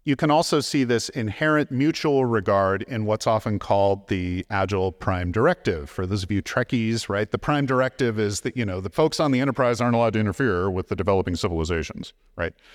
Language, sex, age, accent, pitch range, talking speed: English, male, 40-59, American, 100-155 Hz, 200 wpm